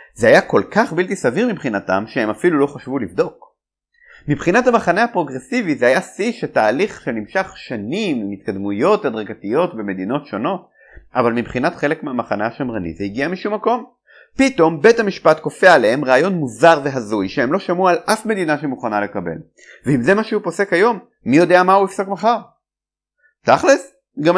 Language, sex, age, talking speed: Hebrew, male, 30-49, 160 wpm